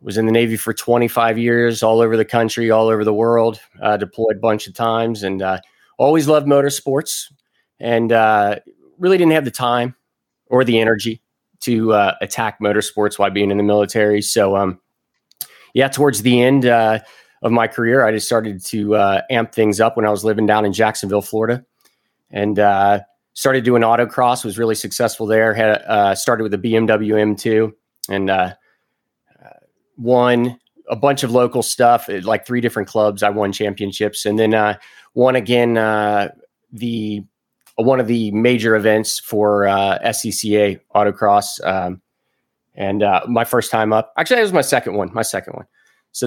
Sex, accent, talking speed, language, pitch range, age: male, American, 175 wpm, English, 105-120 Hz, 30-49